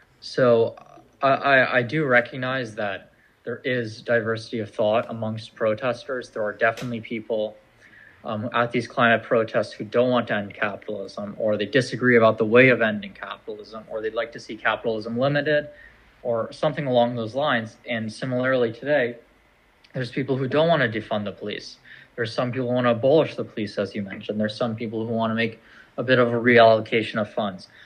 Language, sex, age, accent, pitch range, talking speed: English, male, 20-39, American, 110-130 Hz, 185 wpm